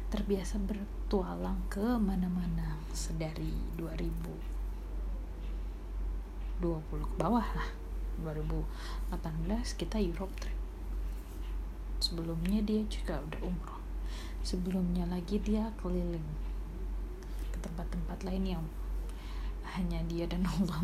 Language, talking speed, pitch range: Indonesian, 85 wpm, 150-205 Hz